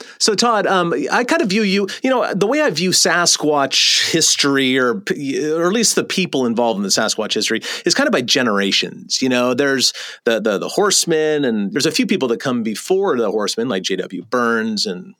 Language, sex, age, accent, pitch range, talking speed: English, male, 30-49, American, 115-195 Hz, 210 wpm